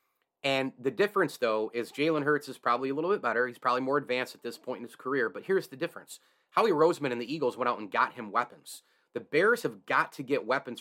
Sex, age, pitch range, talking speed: male, 30-49, 120-145 Hz, 250 wpm